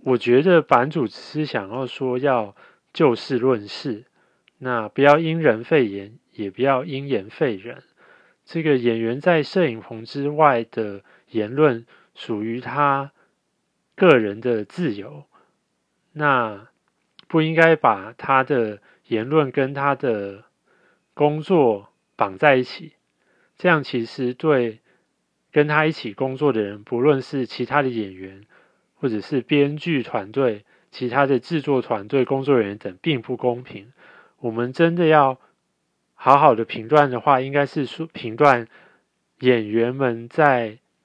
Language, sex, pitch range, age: Chinese, male, 115-150 Hz, 30-49